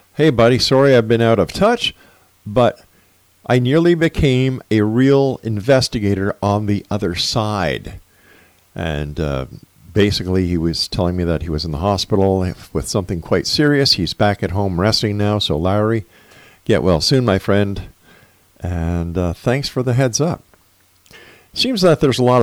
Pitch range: 90-120 Hz